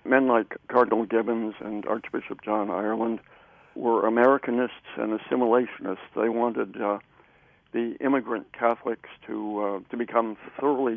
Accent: American